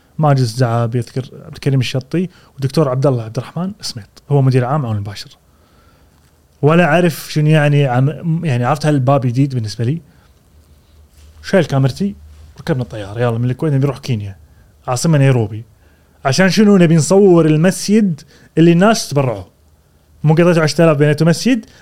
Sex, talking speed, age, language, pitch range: male, 145 wpm, 30-49, Arabic, 120-165 Hz